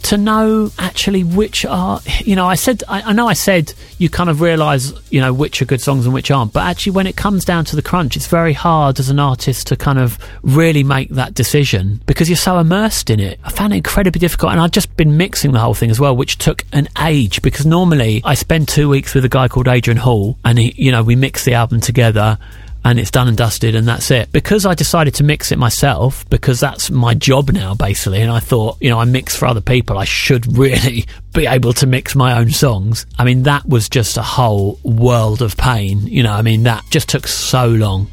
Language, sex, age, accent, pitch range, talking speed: English, male, 30-49, British, 115-145 Hz, 245 wpm